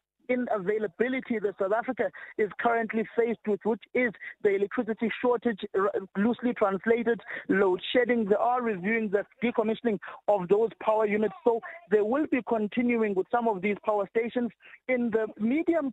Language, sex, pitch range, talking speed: English, male, 210-240 Hz, 155 wpm